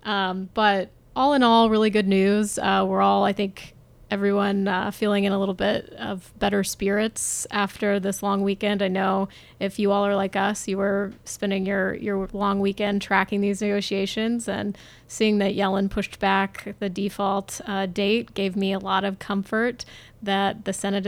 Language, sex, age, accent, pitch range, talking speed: English, female, 20-39, American, 195-210 Hz, 180 wpm